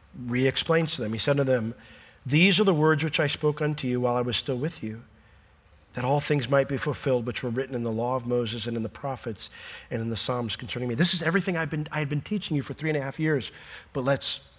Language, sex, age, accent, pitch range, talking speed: English, male, 40-59, American, 105-140 Hz, 265 wpm